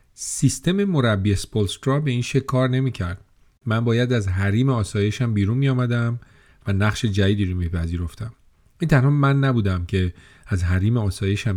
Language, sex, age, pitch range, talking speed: English, male, 40-59, 100-130 Hz, 150 wpm